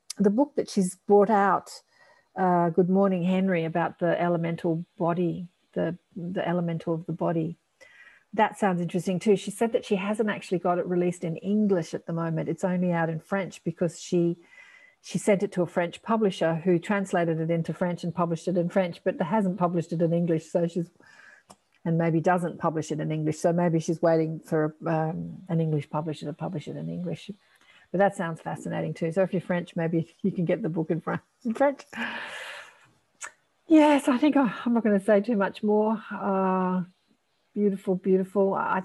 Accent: Australian